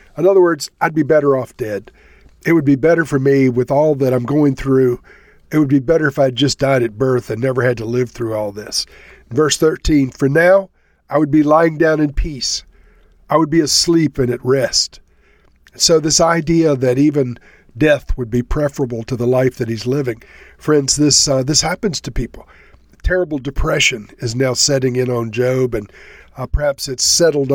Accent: American